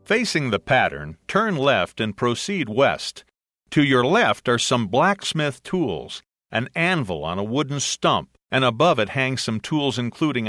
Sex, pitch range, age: male, 110-155 Hz, 50-69